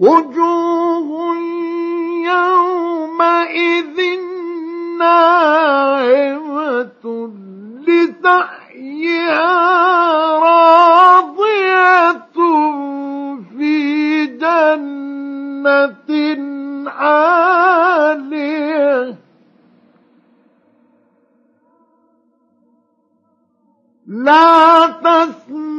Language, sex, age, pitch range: Arabic, male, 50-69, 230-315 Hz